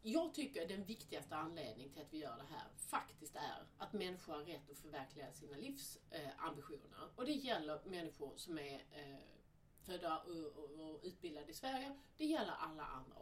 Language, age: Swedish, 40-59